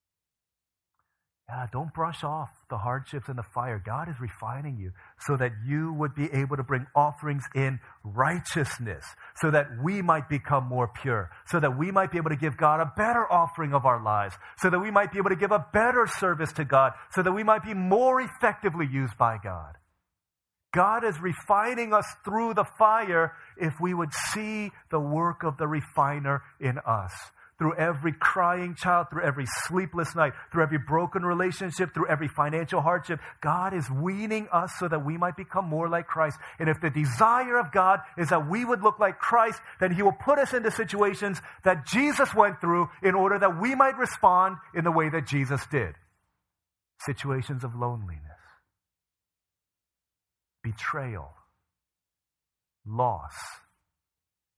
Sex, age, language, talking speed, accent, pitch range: male, 40-59, English, 170 wpm, American, 130-185 Hz